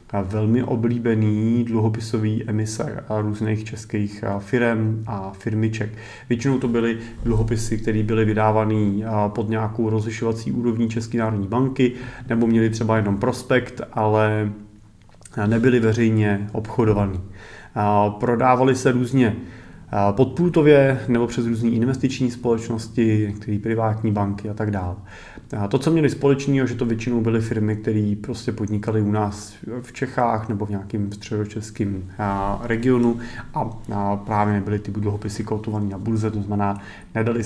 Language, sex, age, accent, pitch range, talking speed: Czech, male, 30-49, native, 105-115 Hz, 125 wpm